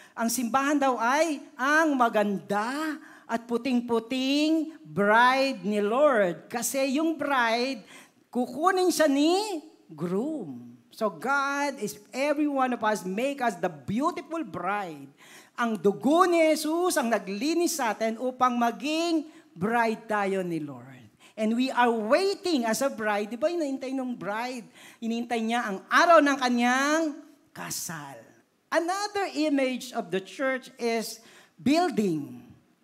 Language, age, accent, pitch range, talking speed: Filipino, 40-59, native, 215-290 Hz, 125 wpm